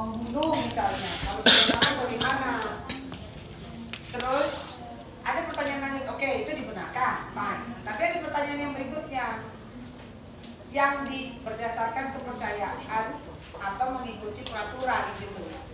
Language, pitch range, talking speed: Indonesian, 225-290 Hz, 105 wpm